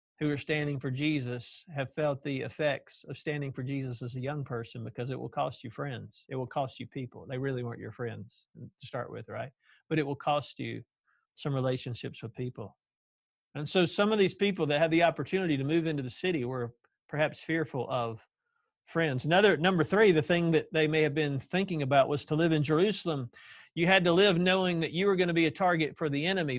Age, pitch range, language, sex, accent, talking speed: 50-69, 145-180 Hz, English, male, American, 225 wpm